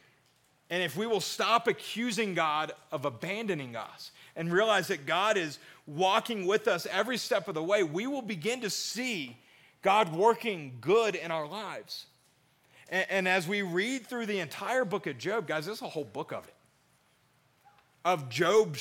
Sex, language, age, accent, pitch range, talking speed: male, English, 40-59, American, 145-205 Hz, 170 wpm